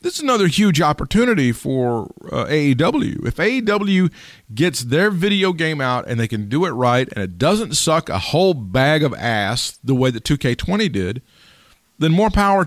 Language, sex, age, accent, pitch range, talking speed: English, male, 40-59, American, 125-195 Hz, 180 wpm